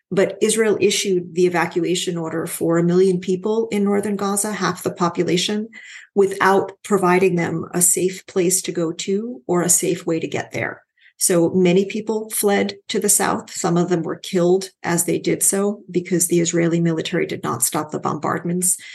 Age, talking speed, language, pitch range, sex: 40-59, 180 wpm, English, 170-195 Hz, female